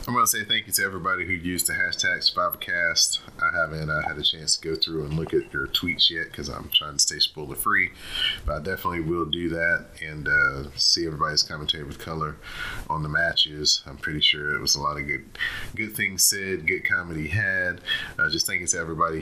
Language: English